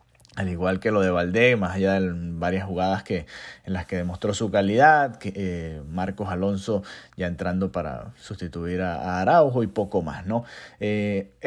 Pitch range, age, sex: 95-125 Hz, 30-49, male